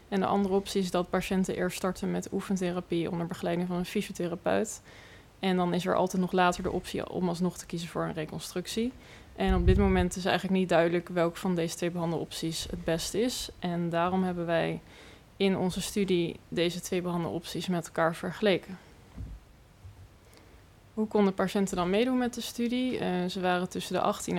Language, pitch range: Dutch, 170-195 Hz